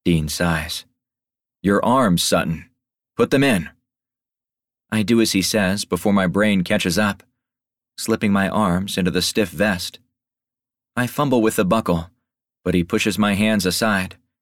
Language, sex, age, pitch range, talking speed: English, male, 40-59, 90-125 Hz, 150 wpm